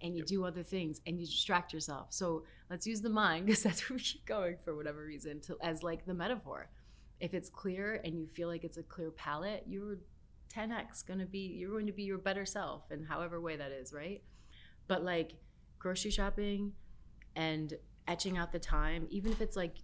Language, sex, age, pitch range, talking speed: English, female, 30-49, 150-180 Hz, 210 wpm